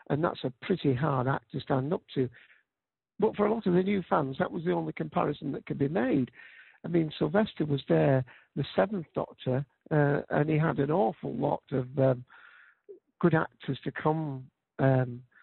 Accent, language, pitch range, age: British, English, 135-175 Hz, 60-79